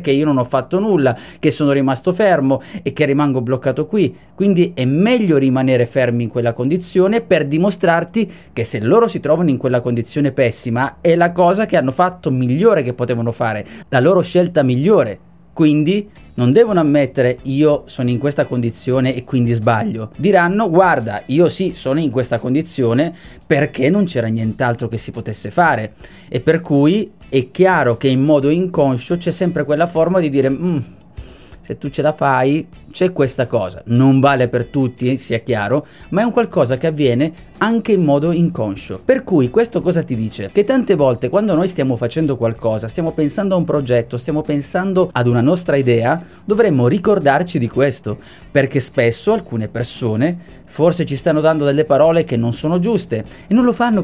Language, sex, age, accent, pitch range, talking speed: Italian, male, 30-49, native, 125-175 Hz, 180 wpm